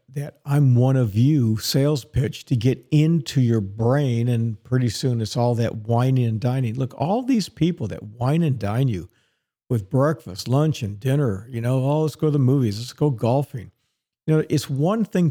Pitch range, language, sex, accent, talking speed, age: 120-150 Hz, English, male, American, 200 wpm, 50-69